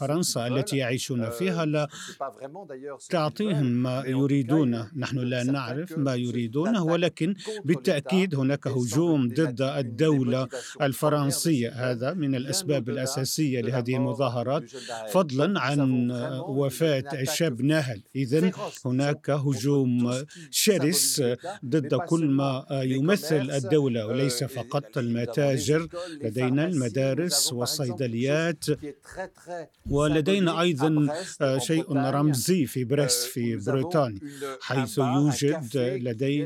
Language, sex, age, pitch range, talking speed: Arabic, male, 50-69, 125-150 Hz, 95 wpm